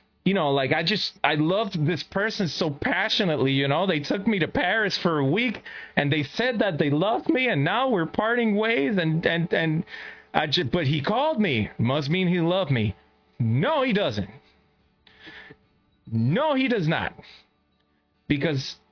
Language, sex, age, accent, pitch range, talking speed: English, male, 30-49, American, 120-195 Hz, 175 wpm